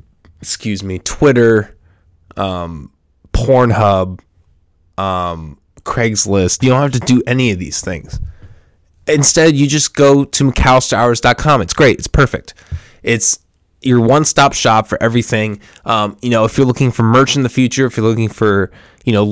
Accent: American